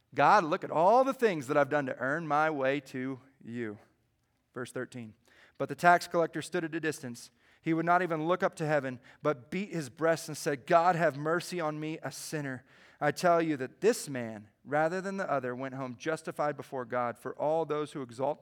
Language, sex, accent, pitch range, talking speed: English, male, American, 120-150 Hz, 215 wpm